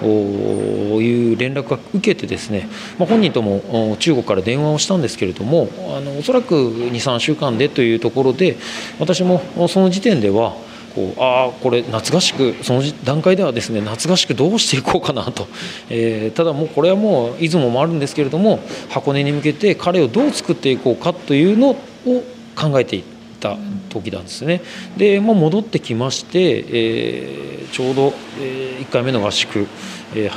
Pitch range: 115-175 Hz